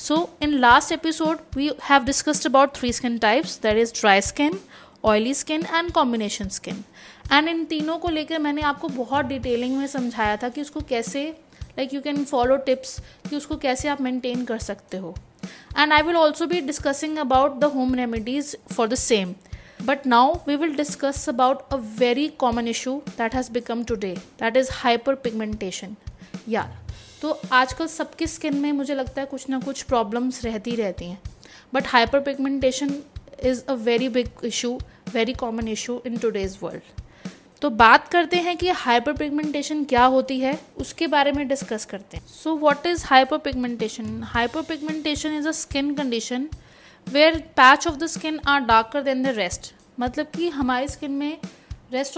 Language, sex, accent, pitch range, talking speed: Hindi, female, native, 240-295 Hz, 170 wpm